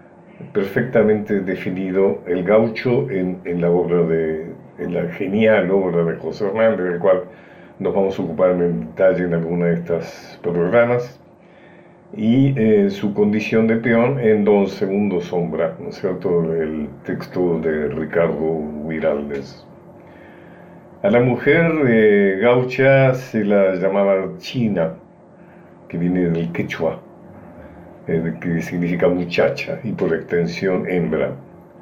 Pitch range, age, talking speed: 90-115 Hz, 50-69, 125 wpm